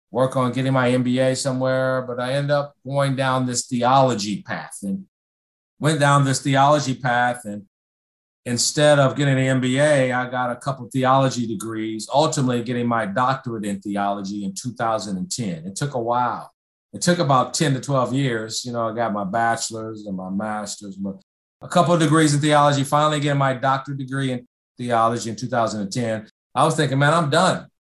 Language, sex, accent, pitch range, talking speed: English, male, American, 115-145 Hz, 180 wpm